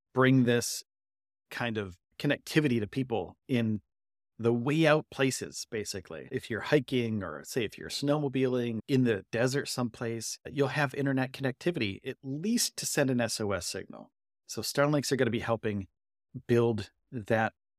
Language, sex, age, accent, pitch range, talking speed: English, male, 30-49, American, 115-145 Hz, 150 wpm